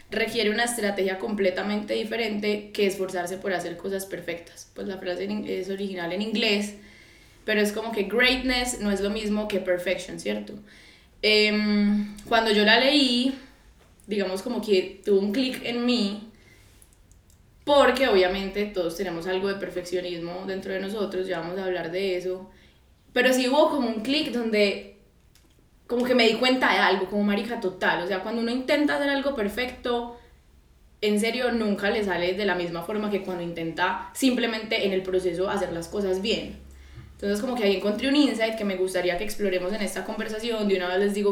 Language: Spanish